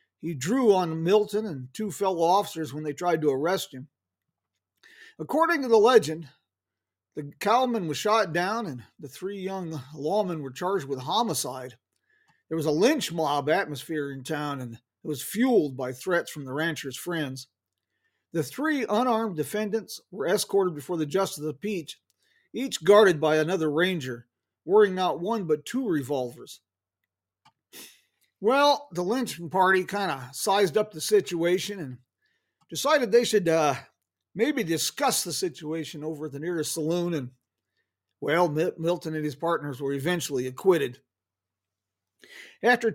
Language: English